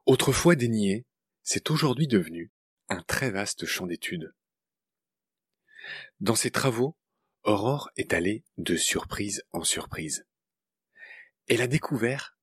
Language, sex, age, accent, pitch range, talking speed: French, male, 40-59, French, 105-175 Hz, 110 wpm